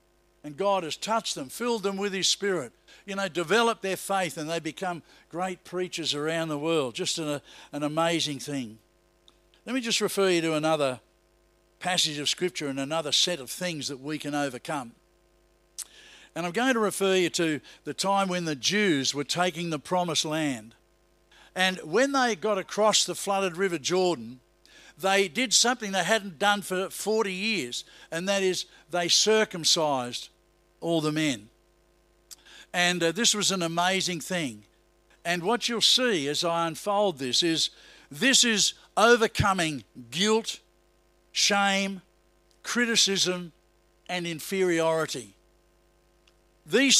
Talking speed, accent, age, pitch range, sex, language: 145 wpm, Australian, 60-79, 160-205 Hz, male, English